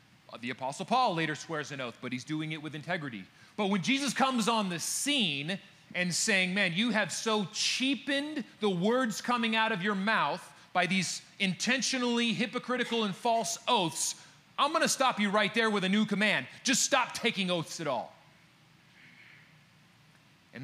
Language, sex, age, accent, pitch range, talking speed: English, male, 30-49, American, 155-210 Hz, 170 wpm